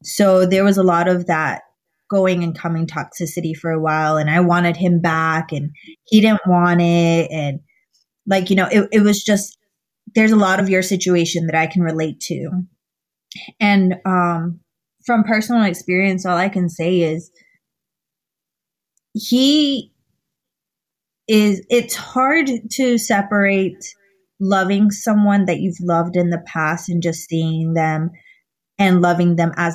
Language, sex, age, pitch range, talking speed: English, female, 20-39, 170-205 Hz, 150 wpm